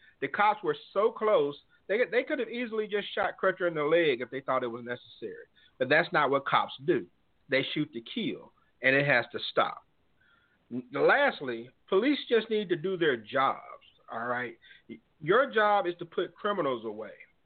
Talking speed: 185 wpm